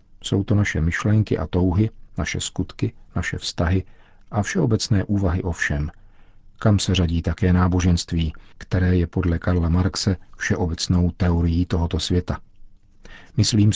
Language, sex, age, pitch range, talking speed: Czech, male, 50-69, 90-105 Hz, 130 wpm